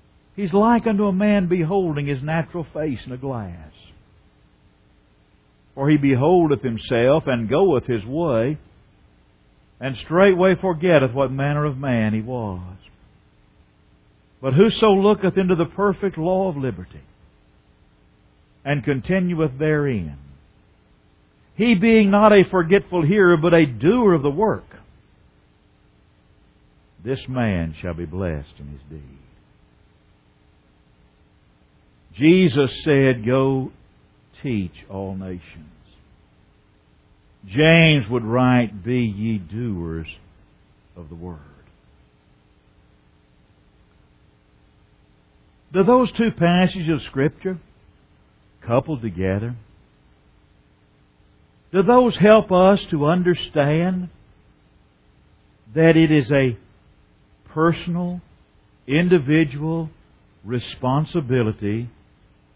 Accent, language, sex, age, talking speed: American, English, male, 60-79, 95 wpm